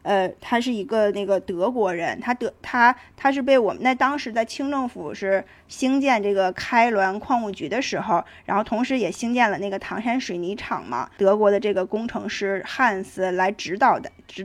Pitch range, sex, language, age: 195-255 Hz, female, Chinese, 20-39